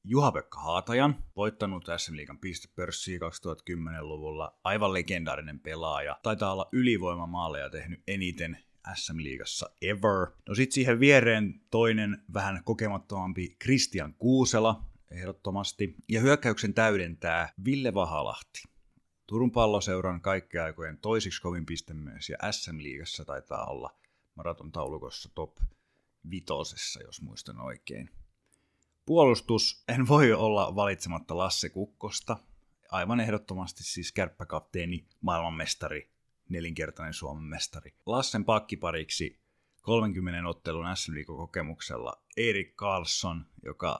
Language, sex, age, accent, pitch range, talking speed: Finnish, male, 30-49, native, 85-110 Hz, 100 wpm